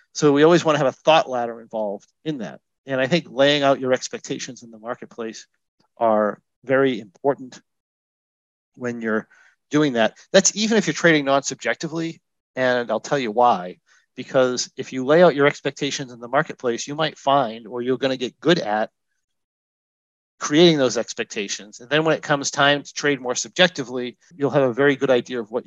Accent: American